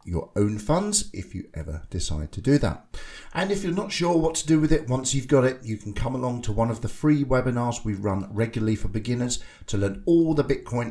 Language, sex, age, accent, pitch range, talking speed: English, male, 50-69, British, 100-130 Hz, 240 wpm